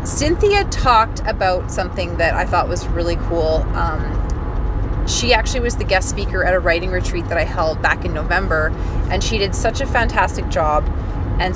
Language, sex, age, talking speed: English, female, 30-49, 180 wpm